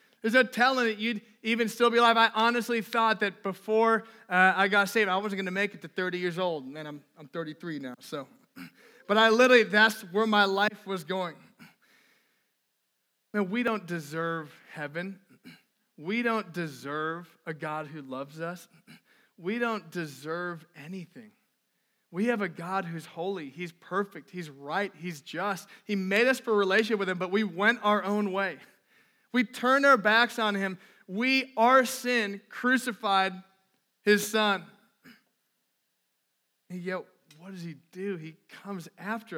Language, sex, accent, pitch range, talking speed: English, male, American, 185-235 Hz, 165 wpm